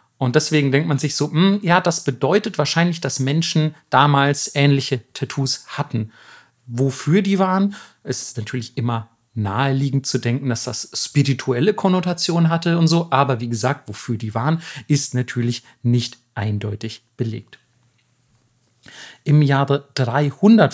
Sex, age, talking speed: male, 40-59, 140 wpm